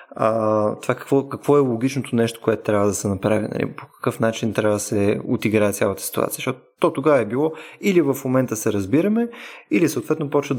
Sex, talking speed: male, 200 wpm